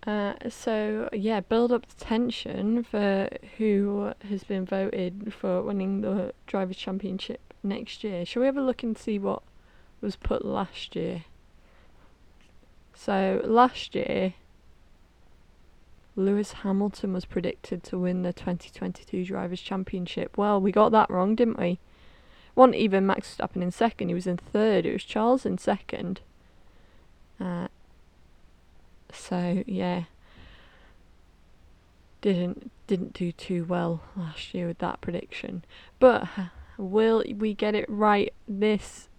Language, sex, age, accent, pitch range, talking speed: English, female, 20-39, British, 160-220 Hz, 135 wpm